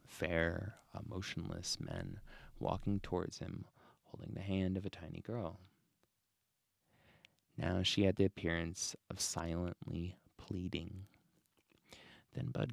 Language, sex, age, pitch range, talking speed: English, male, 30-49, 90-115 Hz, 110 wpm